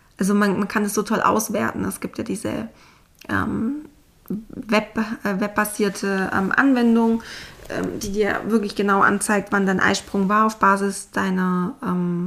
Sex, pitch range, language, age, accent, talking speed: female, 200-230 Hz, German, 20-39, German, 155 wpm